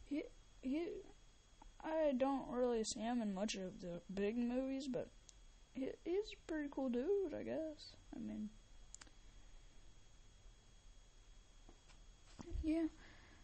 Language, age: English, 10-29